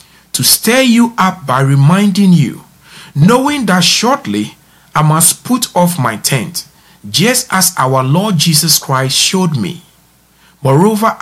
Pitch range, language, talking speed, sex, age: 140-205 Hz, English, 135 wpm, male, 50-69